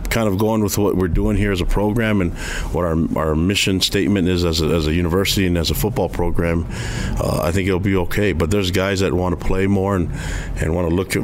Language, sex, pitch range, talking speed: English, male, 80-100 Hz, 245 wpm